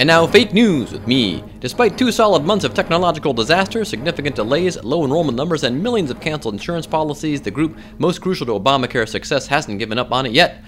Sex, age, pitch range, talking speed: male, 30-49, 110-185 Hz, 210 wpm